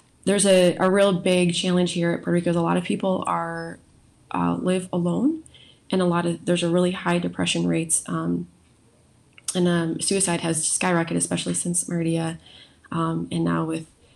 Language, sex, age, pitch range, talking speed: English, female, 20-39, 160-175 Hz, 175 wpm